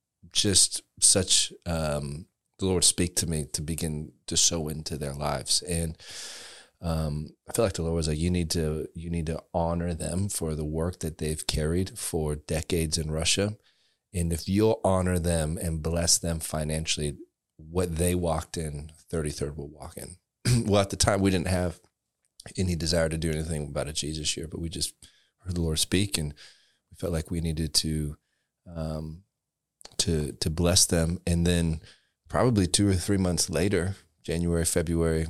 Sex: male